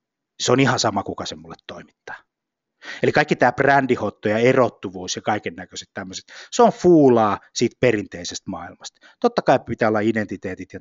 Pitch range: 105-155 Hz